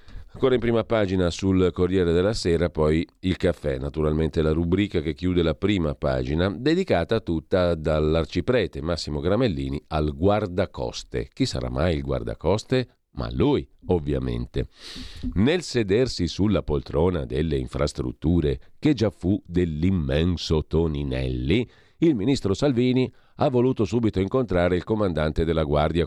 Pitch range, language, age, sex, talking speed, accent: 80-105 Hz, Italian, 50-69, male, 130 wpm, native